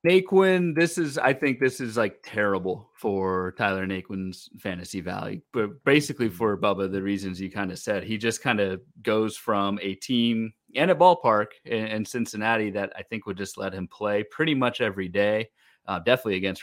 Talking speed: 190 wpm